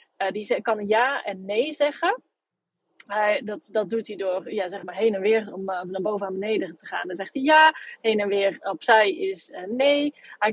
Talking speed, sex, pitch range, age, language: 230 wpm, female, 195-245 Hz, 30-49, Dutch